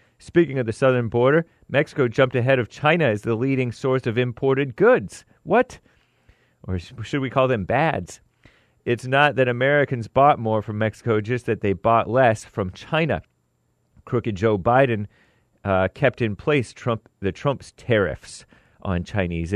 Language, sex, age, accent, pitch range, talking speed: English, male, 30-49, American, 100-125 Hz, 160 wpm